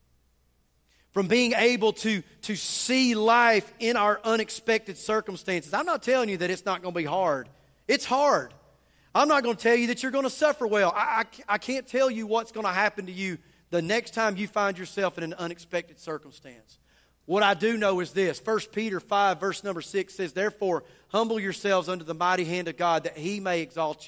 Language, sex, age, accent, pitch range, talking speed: English, male, 30-49, American, 130-200 Hz, 210 wpm